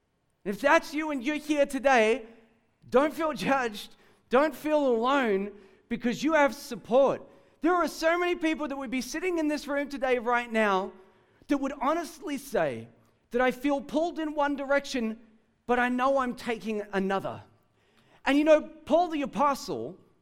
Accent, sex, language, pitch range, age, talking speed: Australian, male, English, 235-310 Hz, 40-59, 165 wpm